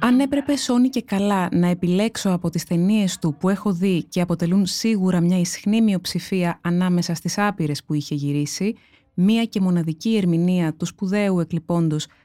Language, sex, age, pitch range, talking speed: Greek, female, 20-39, 175-220 Hz, 160 wpm